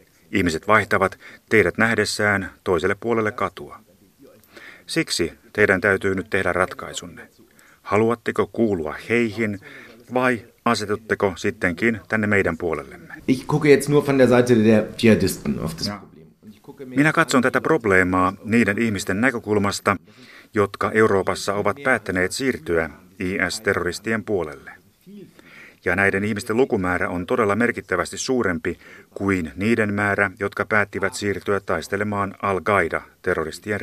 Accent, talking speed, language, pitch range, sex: native, 90 wpm, Finnish, 95-115 Hz, male